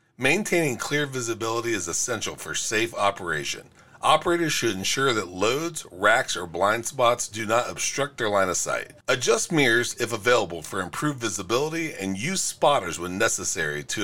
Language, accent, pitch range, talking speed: English, American, 115-160 Hz, 160 wpm